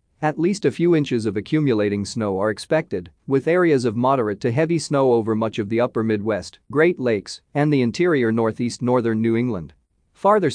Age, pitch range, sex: 40-59, 110-140 Hz, male